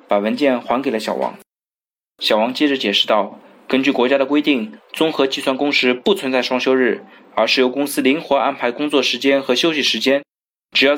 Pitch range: 120-165 Hz